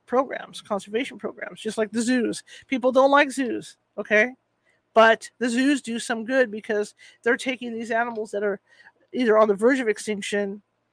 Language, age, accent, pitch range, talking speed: English, 40-59, American, 215-265 Hz, 170 wpm